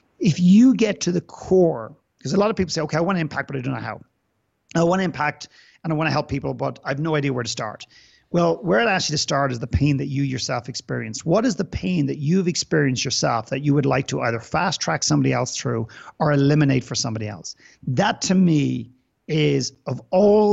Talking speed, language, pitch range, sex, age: 245 wpm, English, 130-165 Hz, male, 40-59